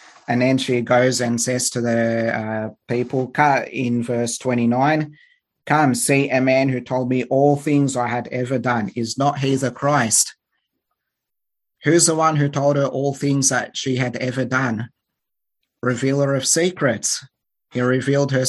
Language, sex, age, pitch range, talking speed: English, male, 30-49, 120-135 Hz, 160 wpm